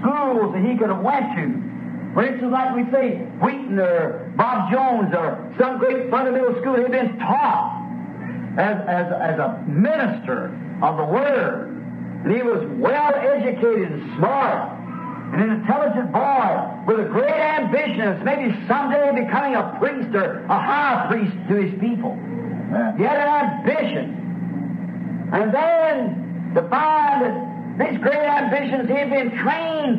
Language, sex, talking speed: English, male, 150 wpm